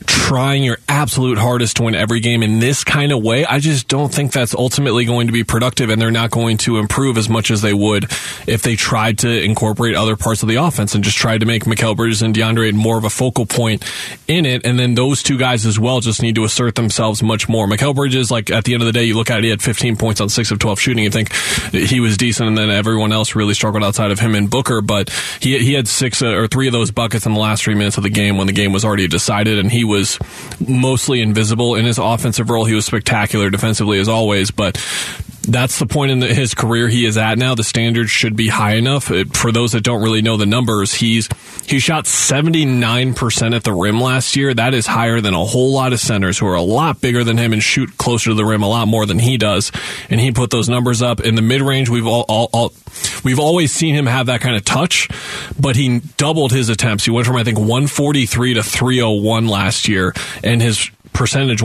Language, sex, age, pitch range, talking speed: English, male, 20-39, 110-125 Hz, 250 wpm